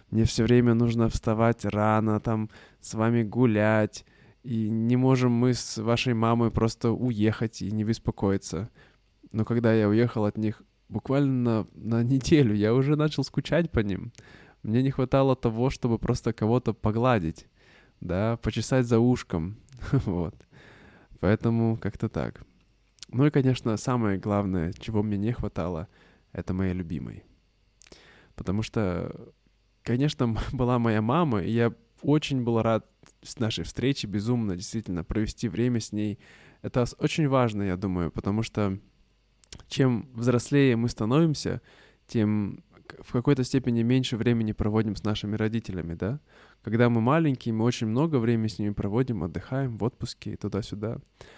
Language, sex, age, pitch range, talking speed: Russian, male, 20-39, 105-125 Hz, 140 wpm